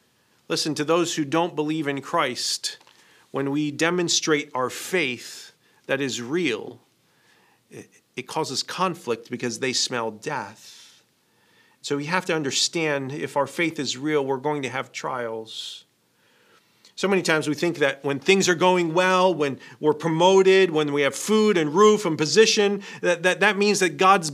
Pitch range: 150-200 Hz